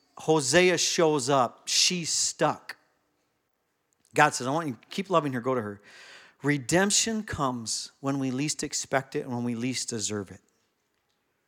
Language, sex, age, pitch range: English, male, 40-59, 125-155 Hz